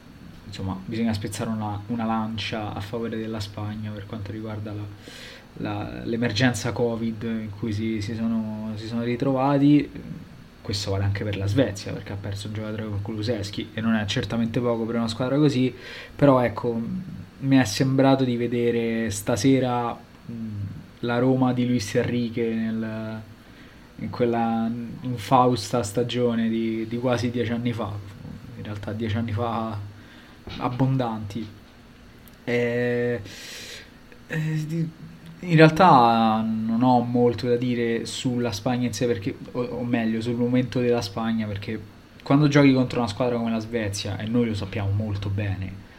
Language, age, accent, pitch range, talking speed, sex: Italian, 20-39, native, 110-125 Hz, 150 wpm, male